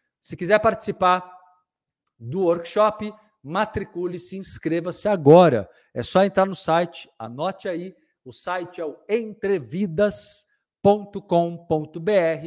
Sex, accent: male, Brazilian